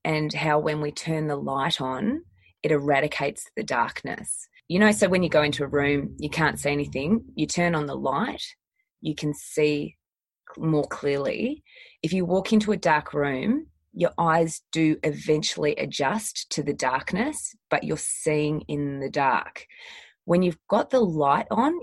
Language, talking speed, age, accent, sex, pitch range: English, 170 wpm, 20-39, Australian, female, 145-180 Hz